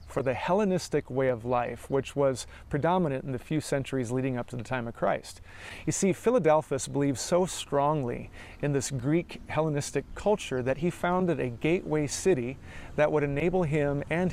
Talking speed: 175 wpm